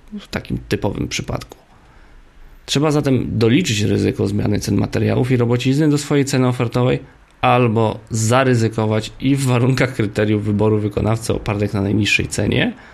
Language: Polish